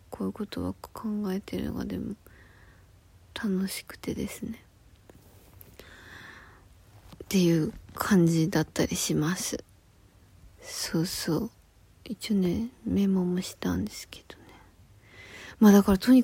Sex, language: female, Japanese